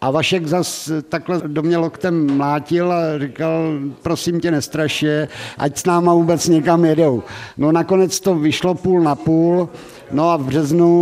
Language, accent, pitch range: Czech, native, 140-165 Hz